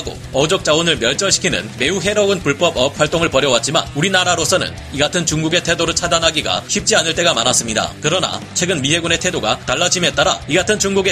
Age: 30-49